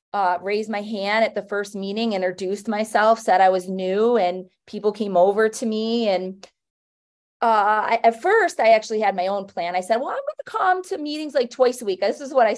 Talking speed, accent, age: 230 wpm, American, 30-49